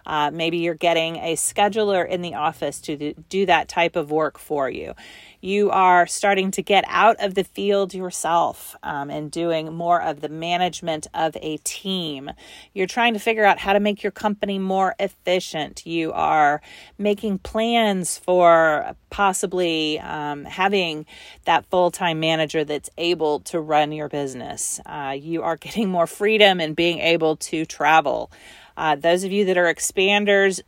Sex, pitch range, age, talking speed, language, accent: female, 165-200 Hz, 40-59, 165 wpm, English, American